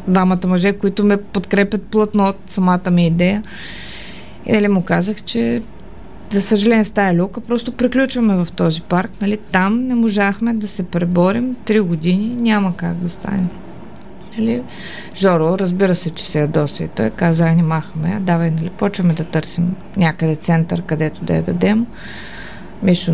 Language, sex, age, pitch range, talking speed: Bulgarian, female, 20-39, 180-225 Hz, 155 wpm